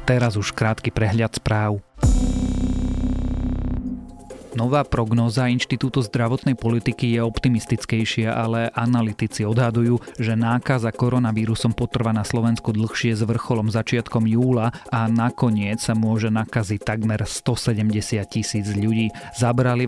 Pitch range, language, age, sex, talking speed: 105-120 Hz, Slovak, 30-49, male, 110 wpm